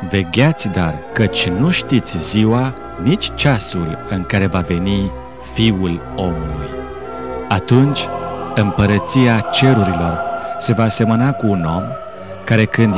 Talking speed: 115 wpm